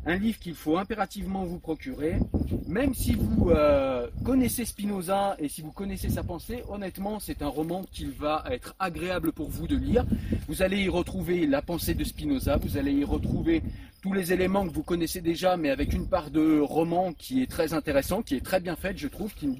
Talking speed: 210 wpm